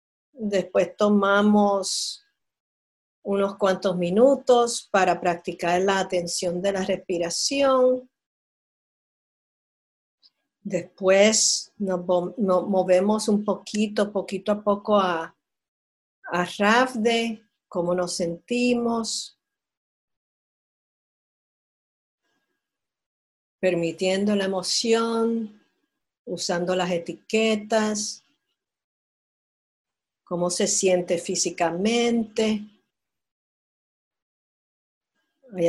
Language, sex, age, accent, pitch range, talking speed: English, female, 50-69, American, 185-235 Hz, 60 wpm